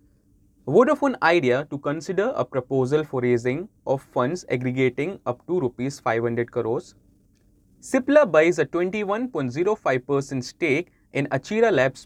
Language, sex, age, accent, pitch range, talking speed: English, male, 20-39, Indian, 125-175 Hz, 120 wpm